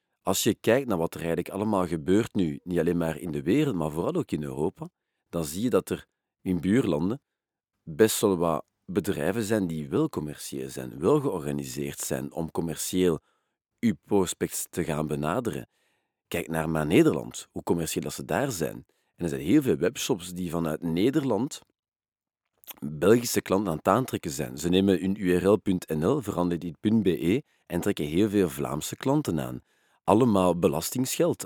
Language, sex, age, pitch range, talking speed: Dutch, male, 40-59, 80-100 Hz, 165 wpm